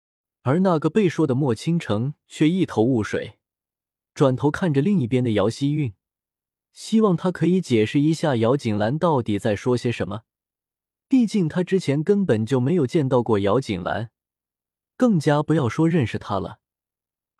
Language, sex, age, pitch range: Chinese, male, 20-39, 115-170 Hz